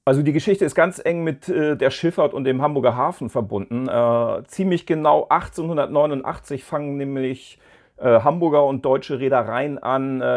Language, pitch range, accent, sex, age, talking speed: German, 125-150 Hz, German, male, 40-59, 160 wpm